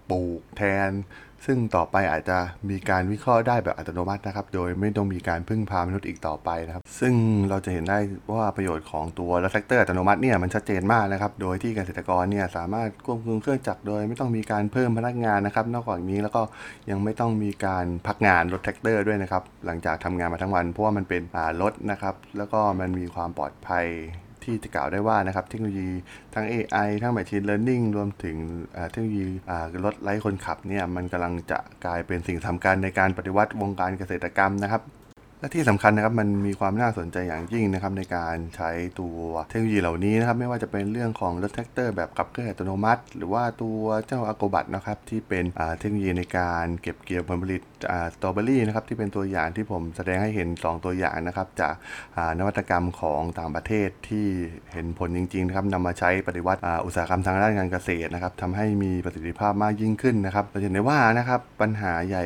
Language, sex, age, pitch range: Thai, male, 20-39, 90-105 Hz